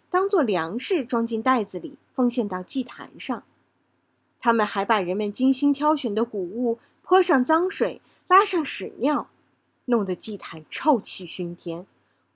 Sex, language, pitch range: female, Chinese, 210-315 Hz